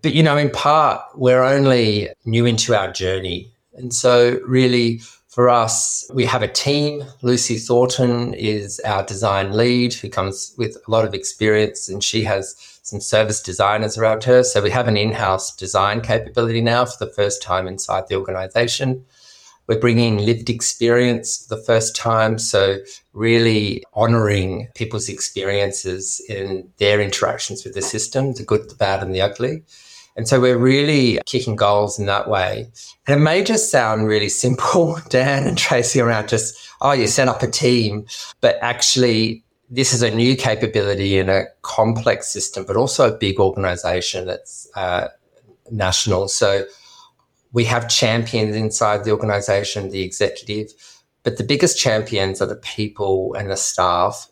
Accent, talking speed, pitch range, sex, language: Australian, 160 wpm, 105-125 Hz, male, English